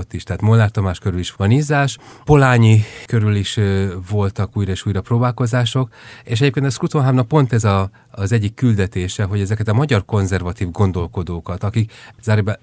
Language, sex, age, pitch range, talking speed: Hungarian, male, 30-49, 95-115 Hz, 170 wpm